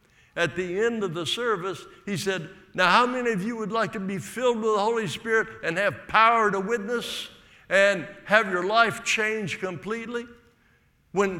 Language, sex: English, male